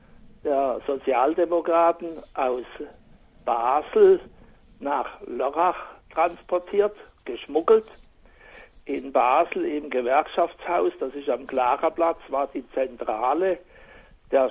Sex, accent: male, German